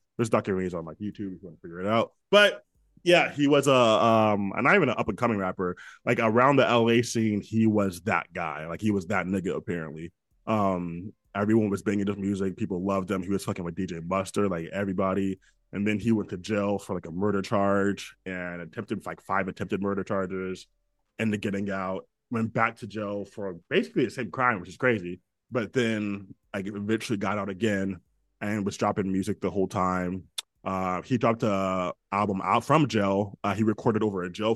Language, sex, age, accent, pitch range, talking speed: English, male, 20-39, American, 95-115 Hz, 210 wpm